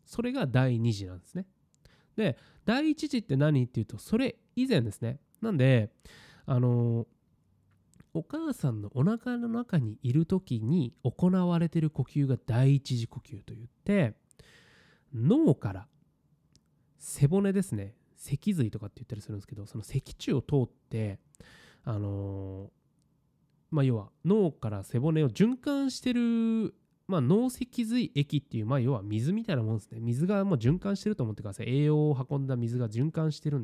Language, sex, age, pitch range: Japanese, male, 20-39, 120-200 Hz